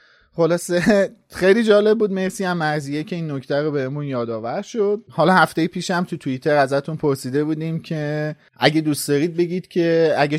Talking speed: 180 wpm